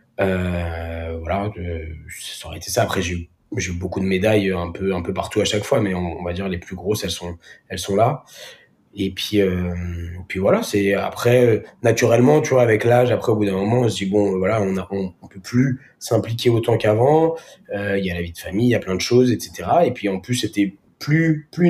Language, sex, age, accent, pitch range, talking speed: French, male, 20-39, French, 95-110 Hz, 250 wpm